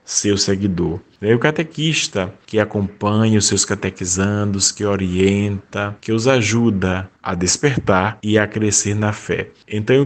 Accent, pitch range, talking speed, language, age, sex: Brazilian, 100-115 Hz, 135 wpm, Portuguese, 20-39, male